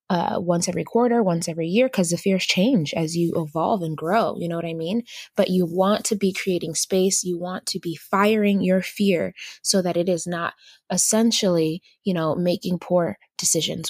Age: 20-39